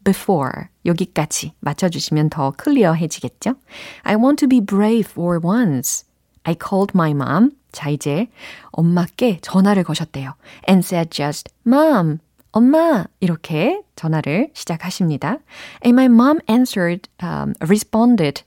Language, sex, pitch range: Korean, female, 160-250 Hz